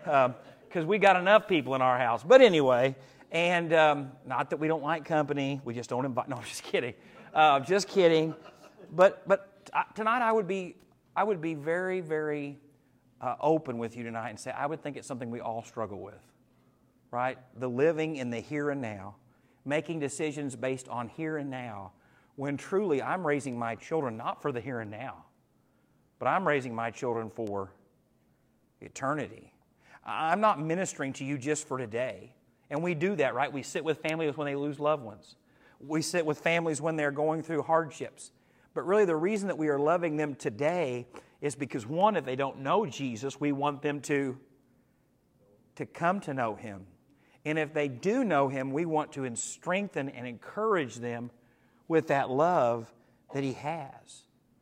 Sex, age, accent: male, 40-59, American